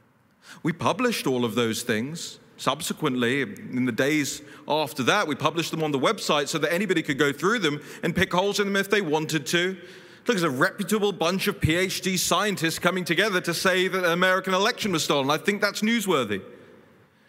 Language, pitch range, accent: English, 145-190 Hz, British